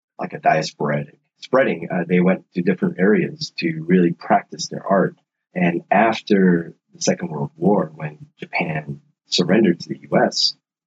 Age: 30-49